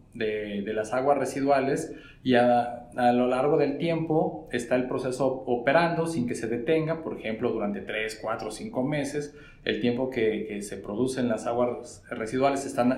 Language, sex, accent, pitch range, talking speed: Spanish, male, Mexican, 120-150 Hz, 175 wpm